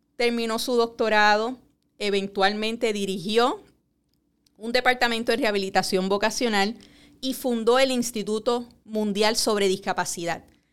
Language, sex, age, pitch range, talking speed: Spanish, female, 30-49, 190-240 Hz, 95 wpm